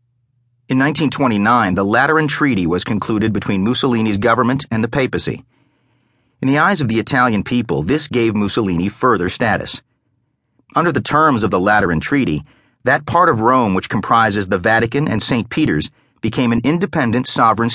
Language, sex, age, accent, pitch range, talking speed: English, male, 40-59, American, 110-130 Hz, 160 wpm